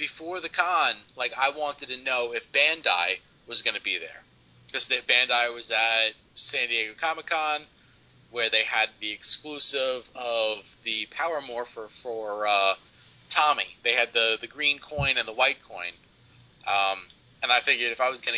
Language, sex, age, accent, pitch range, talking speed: English, male, 30-49, American, 110-130 Hz, 170 wpm